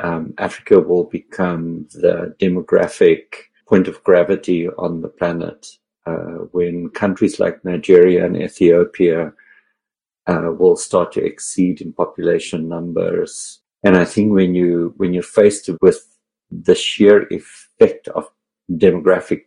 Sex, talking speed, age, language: male, 125 wpm, 50-69, English